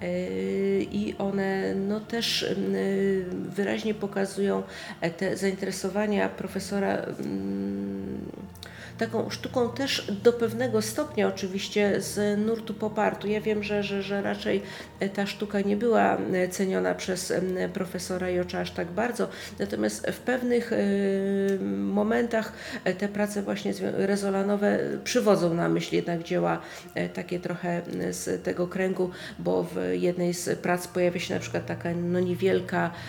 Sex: female